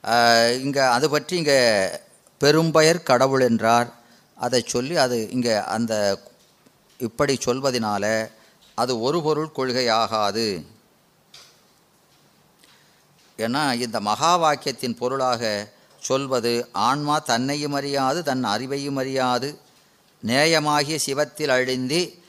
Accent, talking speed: native, 85 wpm